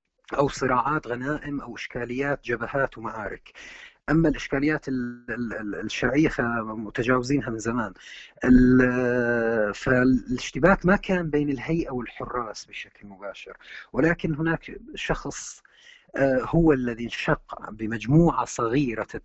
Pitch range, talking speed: 120-150 Hz, 90 wpm